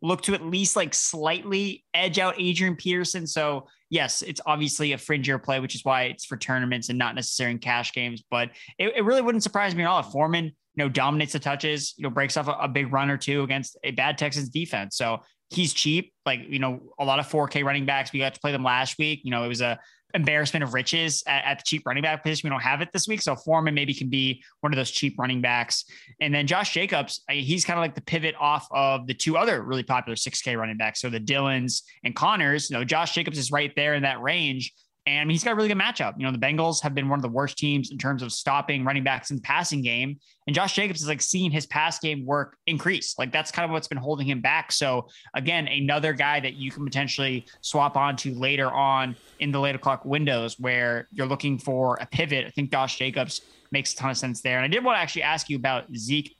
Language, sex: English, male